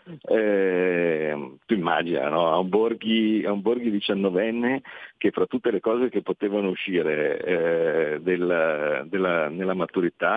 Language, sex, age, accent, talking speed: Italian, male, 50-69, native, 120 wpm